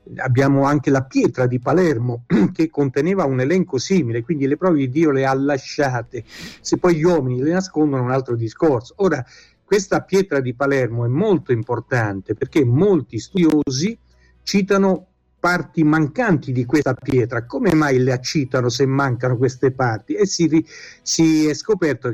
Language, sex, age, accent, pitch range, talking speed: Italian, male, 60-79, native, 130-165 Hz, 155 wpm